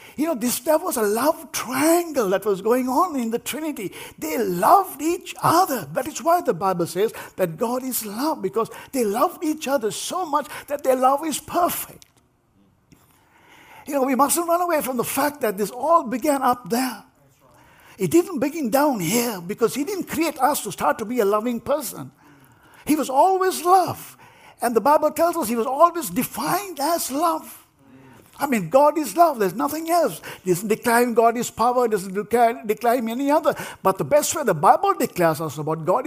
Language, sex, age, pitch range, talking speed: English, male, 60-79, 195-300 Hz, 195 wpm